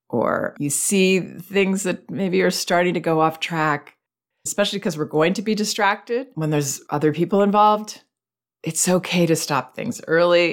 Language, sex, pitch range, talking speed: English, female, 145-190 Hz, 170 wpm